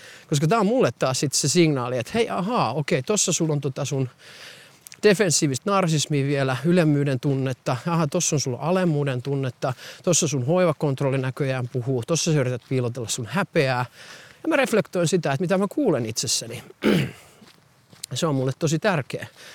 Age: 30-49